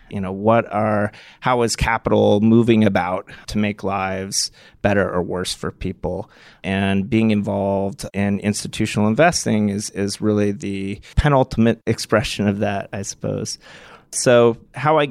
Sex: male